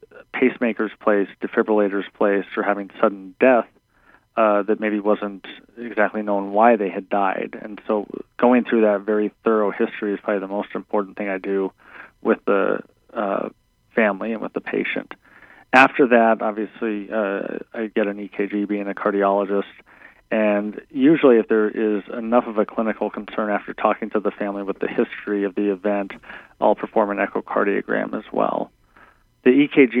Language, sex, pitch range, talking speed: English, male, 100-110 Hz, 165 wpm